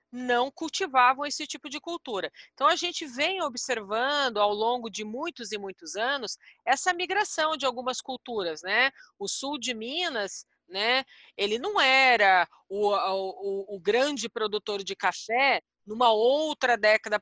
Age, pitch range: 40-59, 195-250 Hz